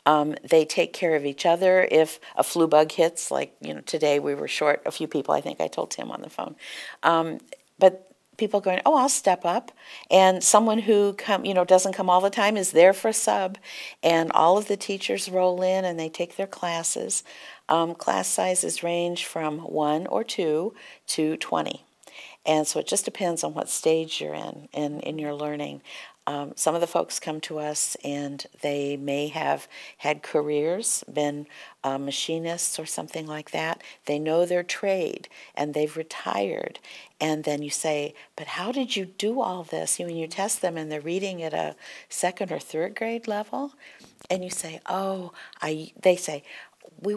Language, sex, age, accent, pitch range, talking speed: English, female, 50-69, American, 150-190 Hz, 195 wpm